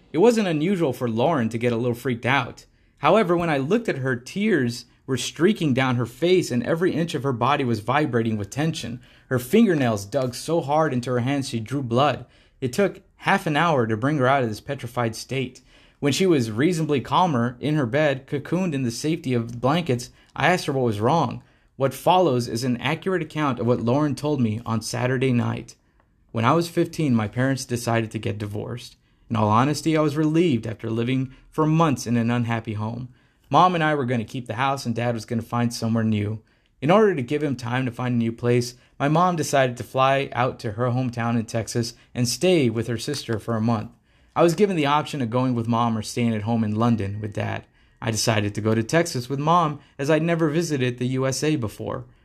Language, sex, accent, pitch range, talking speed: English, male, American, 115-150 Hz, 225 wpm